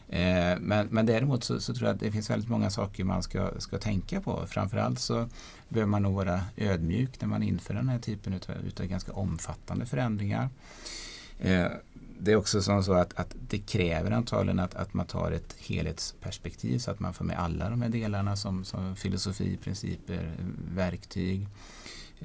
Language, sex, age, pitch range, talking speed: Swedish, male, 30-49, 85-105 Hz, 170 wpm